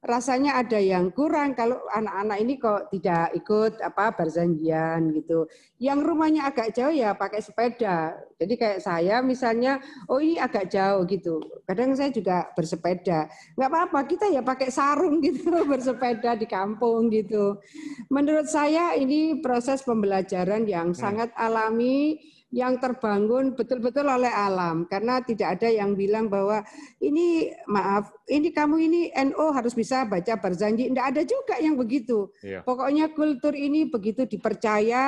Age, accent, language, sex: 40-59, native, Indonesian, female